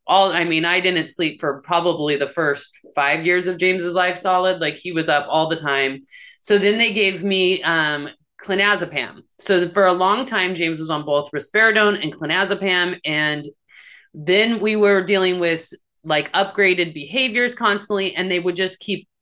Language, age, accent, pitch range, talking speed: English, 30-49, American, 155-195 Hz, 180 wpm